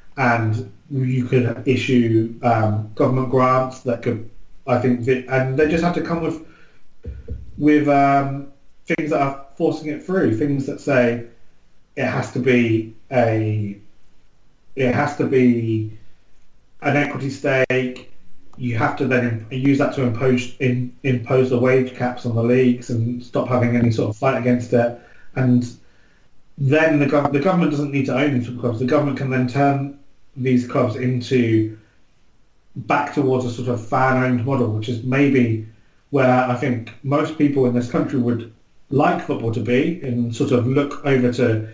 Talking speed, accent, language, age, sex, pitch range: 165 wpm, British, English, 30-49, male, 120-140 Hz